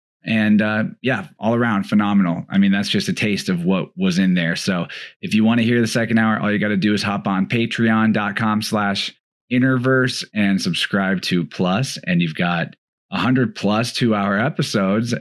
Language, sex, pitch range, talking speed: English, male, 105-130 Hz, 195 wpm